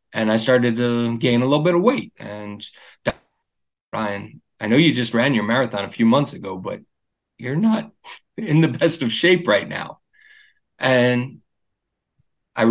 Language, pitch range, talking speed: English, 105-125 Hz, 165 wpm